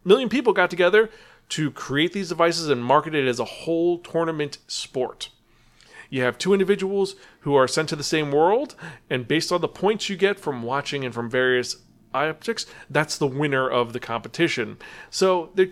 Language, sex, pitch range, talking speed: English, male, 130-185 Hz, 185 wpm